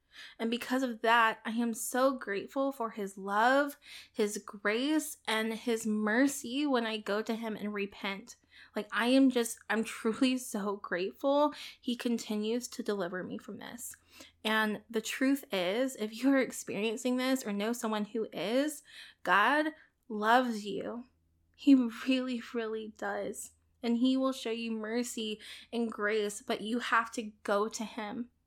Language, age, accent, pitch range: English, 20-39, American, 215-255 Hz